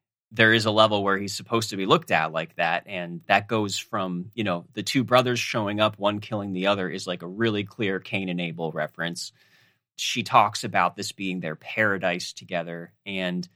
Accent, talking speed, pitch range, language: American, 205 wpm, 90-115 Hz, English